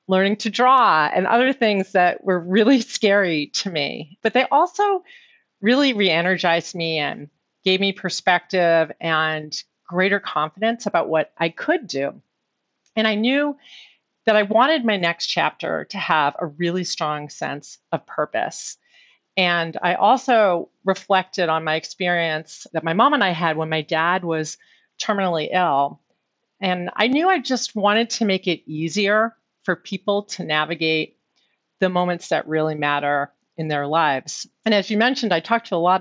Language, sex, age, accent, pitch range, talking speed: English, female, 40-59, American, 160-210 Hz, 160 wpm